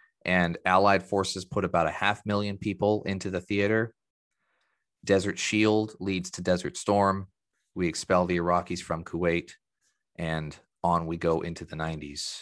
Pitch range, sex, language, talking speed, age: 85-105 Hz, male, English, 150 wpm, 30-49